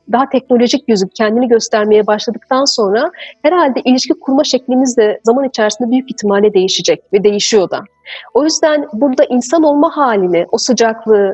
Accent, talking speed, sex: native, 150 wpm, female